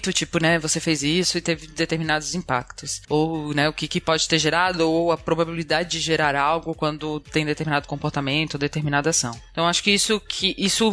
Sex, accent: female, Brazilian